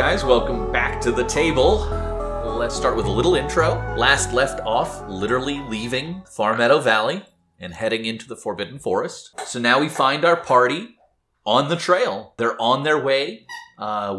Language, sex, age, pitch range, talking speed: English, male, 30-49, 100-140 Hz, 170 wpm